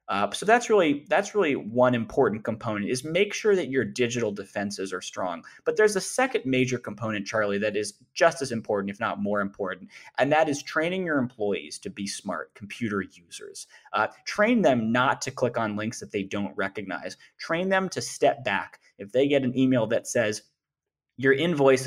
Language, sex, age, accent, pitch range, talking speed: English, male, 20-39, American, 110-130 Hz, 195 wpm